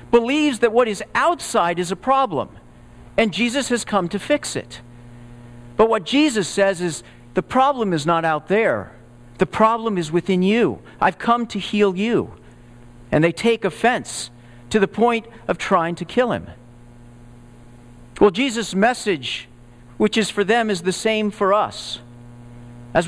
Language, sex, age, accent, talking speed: English, male, 50-69, American, 160 wpm